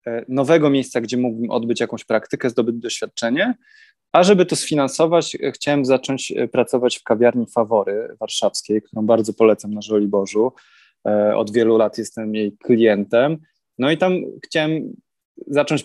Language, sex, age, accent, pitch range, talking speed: Polish, male, 20-39, native, 110-130 Hz, 135 wpm